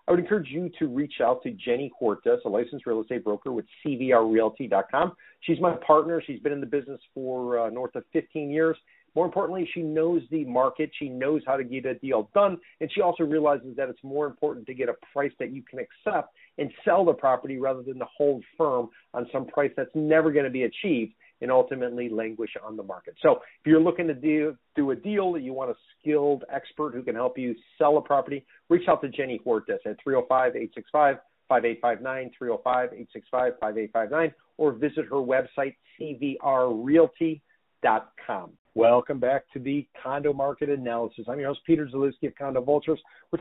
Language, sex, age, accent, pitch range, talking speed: English, male, 40-59, American, 130-160 Hz, 185 wpm